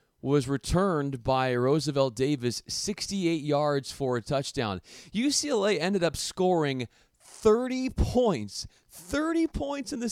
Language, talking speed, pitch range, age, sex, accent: English, 120 wpm, 120-170 Hz, 40-59, male, American